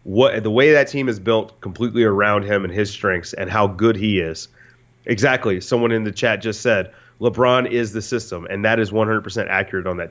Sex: male